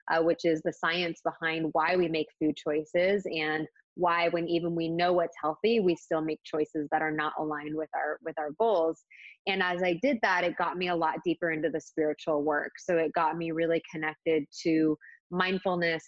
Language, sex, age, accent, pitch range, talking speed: English, female, 20-39, American, 160-195 Hz, 200 wpm